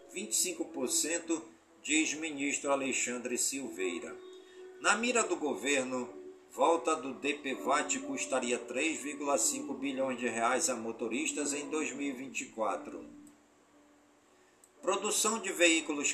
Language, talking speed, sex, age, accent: Portuguese, 90 wpm, male, 50-69, Brazilian